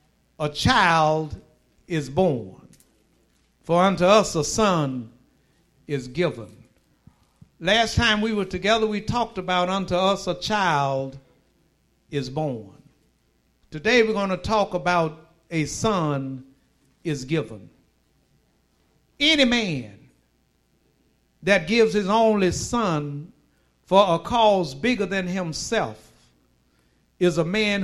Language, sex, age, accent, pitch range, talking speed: English, male, 60-79, American, 130-200 Hz, 110 wpm